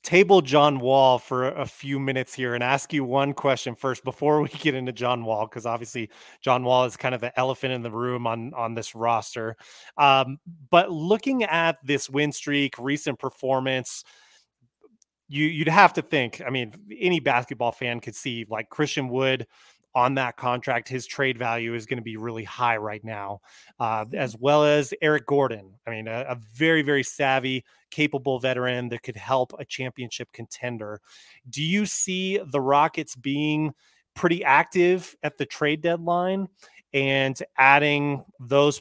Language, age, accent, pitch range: English, 30-49, American, 125-150 Hz